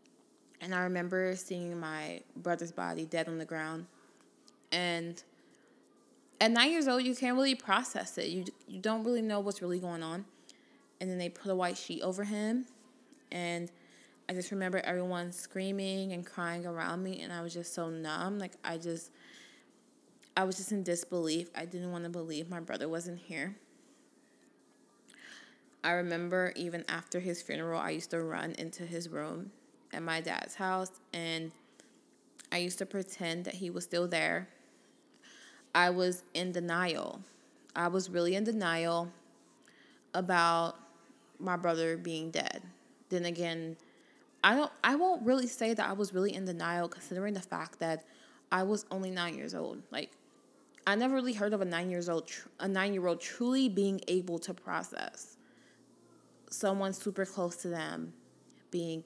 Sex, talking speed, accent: female, 160 wpm, American